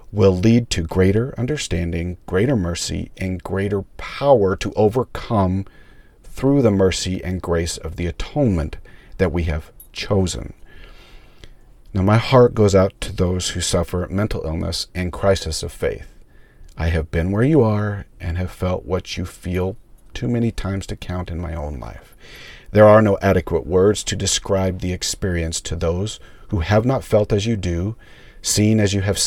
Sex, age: male, 40-59